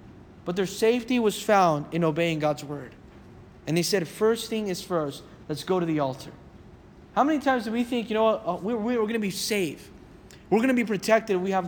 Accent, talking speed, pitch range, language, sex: American, 220 wpm, 195-240 Hz, English, male